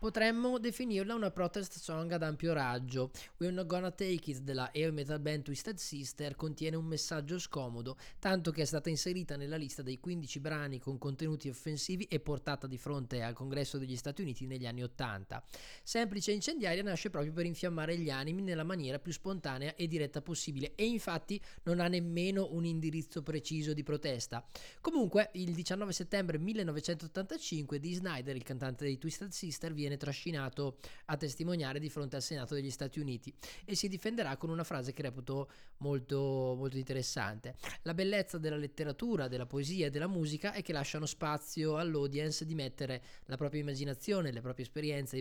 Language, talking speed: Italian, 175 wpm